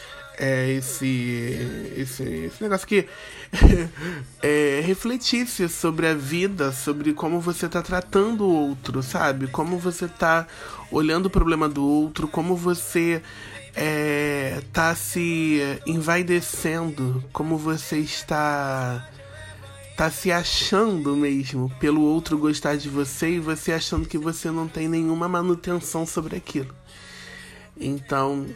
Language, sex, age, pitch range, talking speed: Portuguese, male, 20-39, 135-170 Hz, 120 wpm